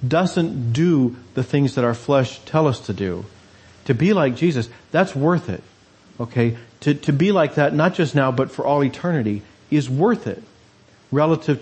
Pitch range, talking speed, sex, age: 115-150 Hz, 180 wpm, male, 40-59